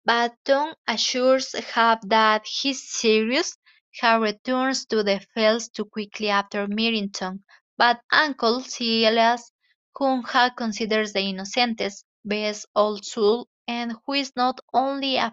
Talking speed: 135 wpm